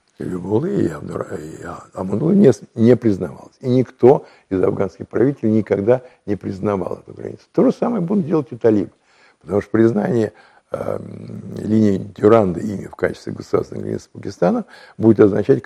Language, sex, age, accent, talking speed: Russian, male, 60-79, native, 145 wpm